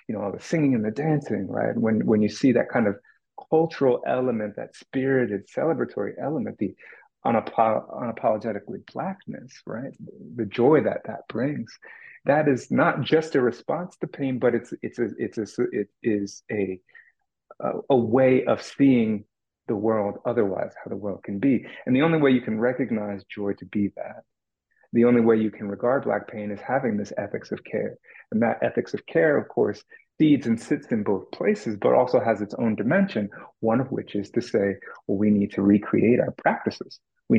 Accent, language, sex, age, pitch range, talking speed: American, English, male, 30-49, 105-135 Hz, 195 wpm